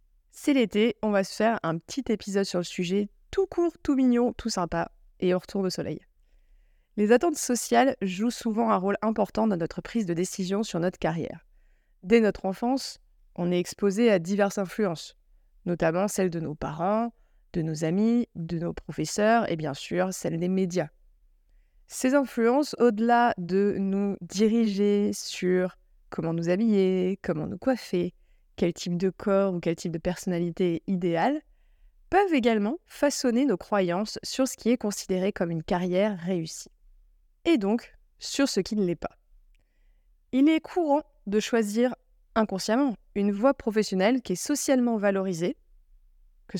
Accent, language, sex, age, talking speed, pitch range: French, French, female, 20-39, 160 wpm, 180-230 Hz